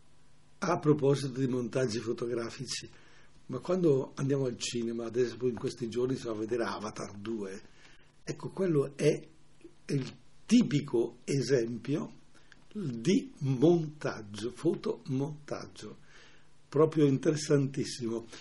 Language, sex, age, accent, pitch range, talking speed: Italian, male, 60-79, native, 125-150 Hz, 105 wpm